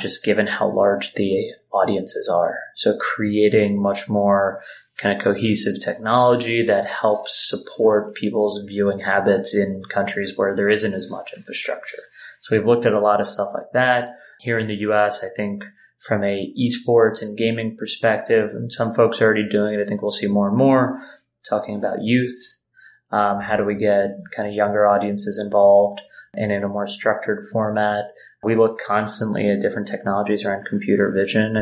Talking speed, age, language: 180 wpm, 20-39, English